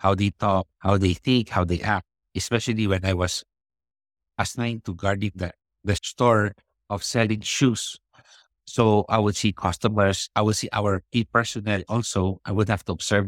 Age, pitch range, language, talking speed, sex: 60-79, 95-110 Hz, English, 170 wpm, male